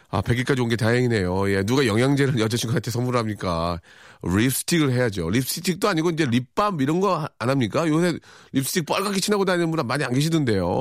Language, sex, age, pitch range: Korean, male, 40-59, 115-170 Hz